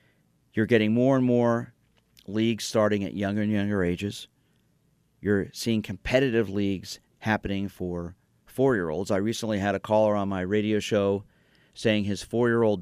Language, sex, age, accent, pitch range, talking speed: English, male, 40-59, American, 95-110 Hz, 145 wpm